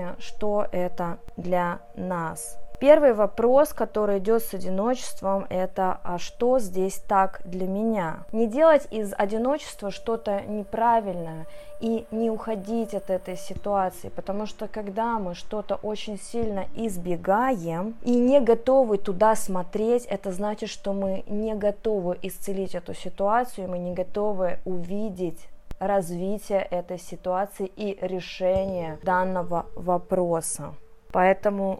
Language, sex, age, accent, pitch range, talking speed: Russian, female, 20-39, native, 180-210 Hz, 120 wpm